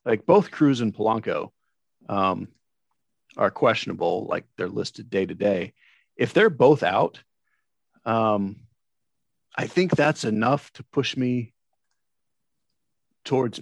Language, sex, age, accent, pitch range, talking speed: English, male, 40-59, American, 105-140 Hz, 120 wpm